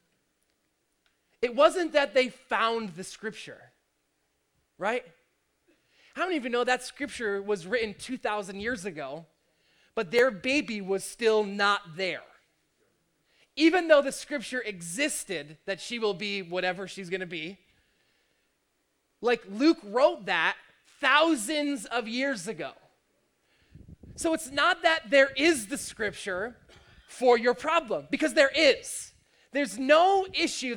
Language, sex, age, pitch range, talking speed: English, male, 20-39, 235-305 Hz, 130 wpm